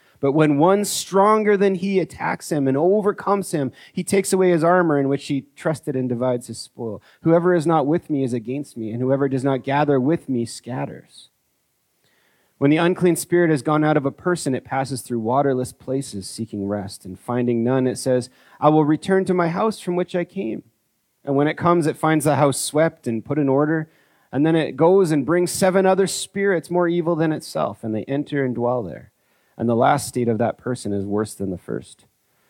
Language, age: English, 30-49